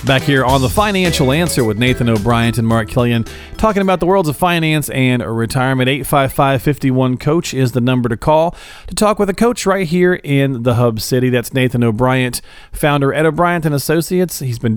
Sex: male